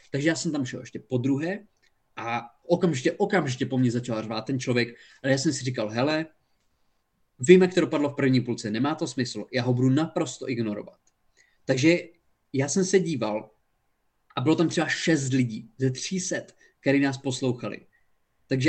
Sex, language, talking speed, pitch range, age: male, Czech, 175 wpm, 125-170 Hz, 20-39